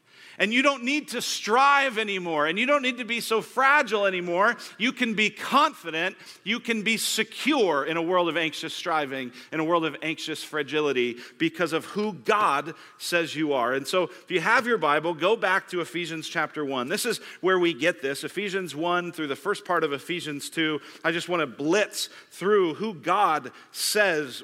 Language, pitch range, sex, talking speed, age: English, 150-205 Hz, male, 195 wpm, 40-59